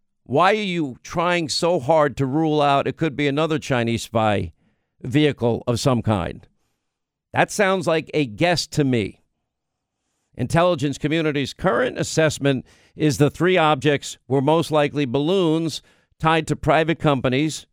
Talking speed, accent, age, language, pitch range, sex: 140 wpm, American, 50-69, English, 125-160 Hz, male